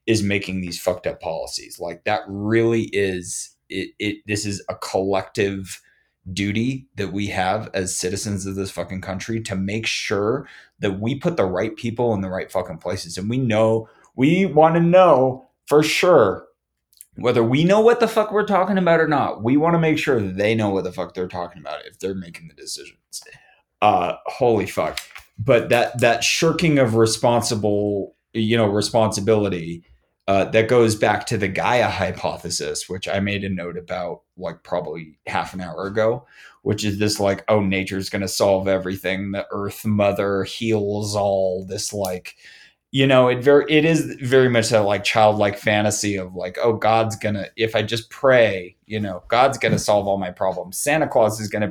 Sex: male